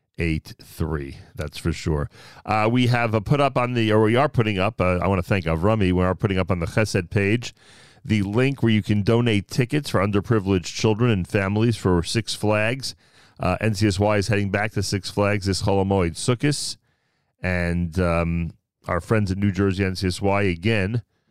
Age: 40-59